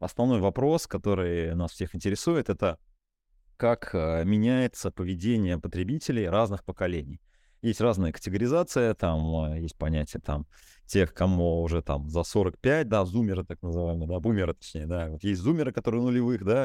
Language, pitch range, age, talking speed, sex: Russian, 85-105 Hz, 30-49, 135 wpm, male